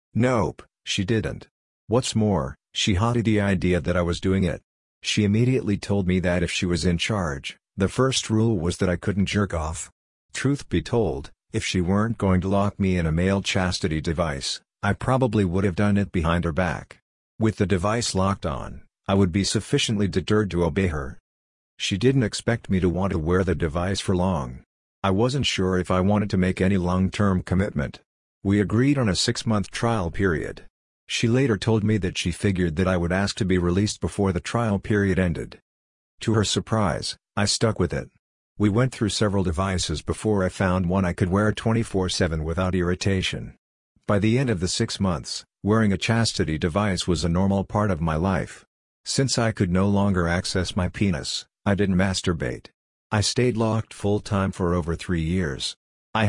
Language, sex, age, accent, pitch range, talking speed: English, male, 50-69, American, 90-105 Hz, 195 wpm